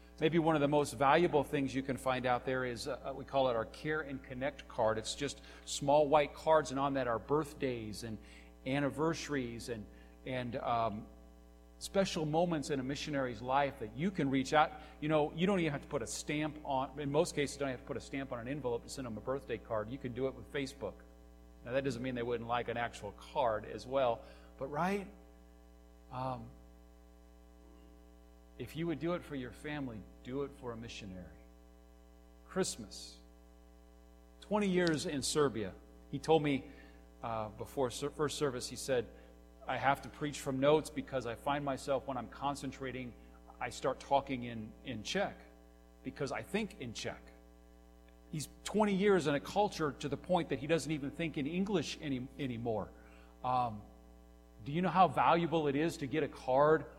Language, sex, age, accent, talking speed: English, male, 50-69, American, 190 wpm